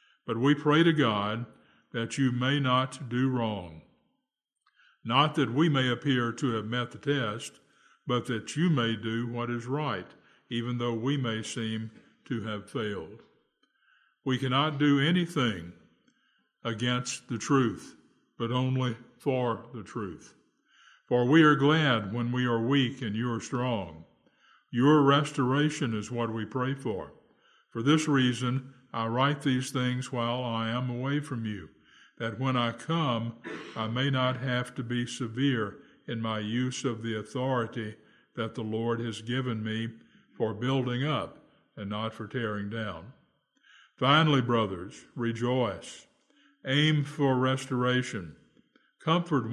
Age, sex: 60-79, male